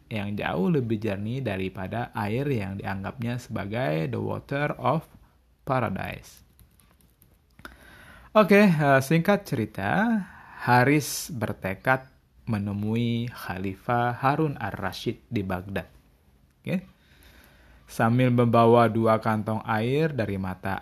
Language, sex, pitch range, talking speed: Indonesian, male, 95-140 Hz, 95 wpm